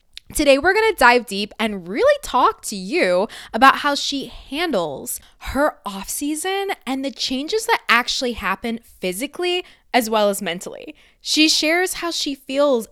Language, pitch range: English, 220-300 Hz